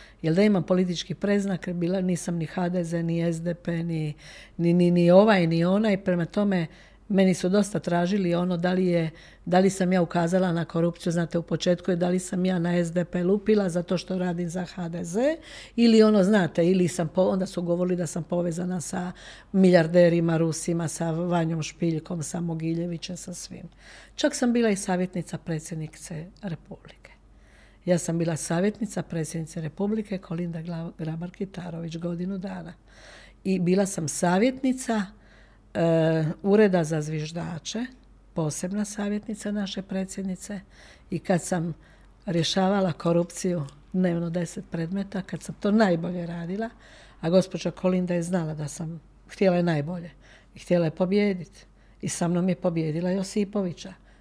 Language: Croatian